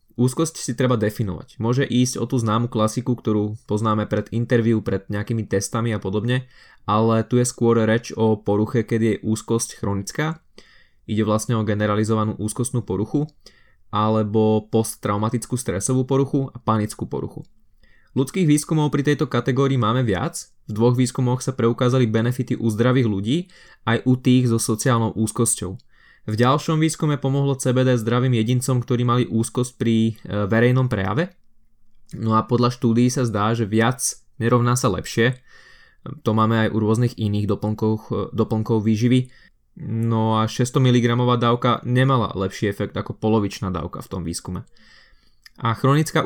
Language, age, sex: Slovak, 20-39, male